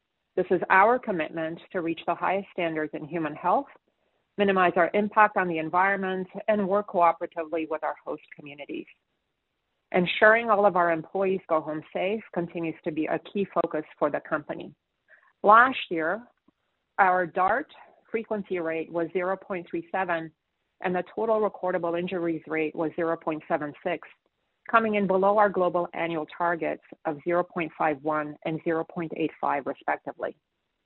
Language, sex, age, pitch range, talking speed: English, female, 40-59, 165-200 Hz, 135 wpm